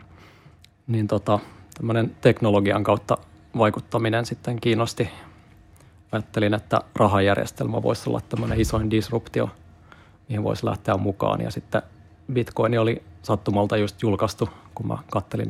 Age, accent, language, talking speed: 30-49, native, Finnish, 110 wpm